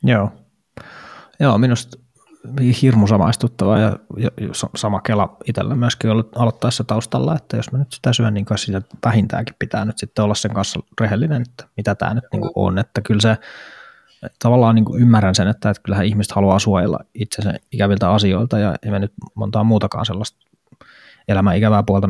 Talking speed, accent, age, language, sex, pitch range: 155 wpm, native, 20-39, Finnish, male, 100-115 Hz